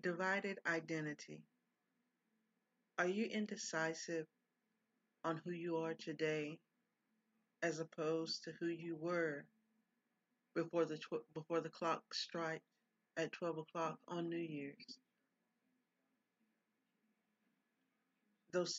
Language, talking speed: English, 95 wpm